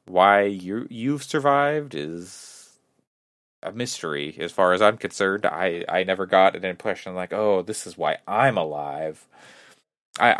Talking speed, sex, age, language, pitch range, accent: 150 wpm, male, 30-49, English, 80-110 Hz, American